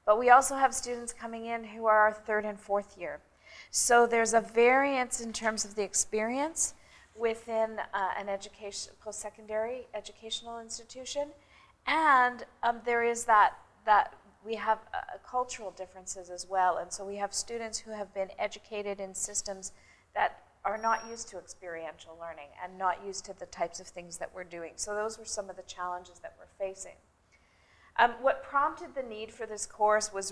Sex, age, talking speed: female, 40-59, 180 wpm